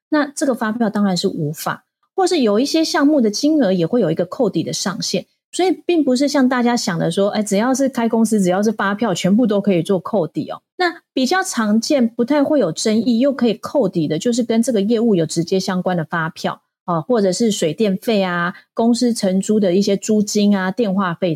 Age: 30-49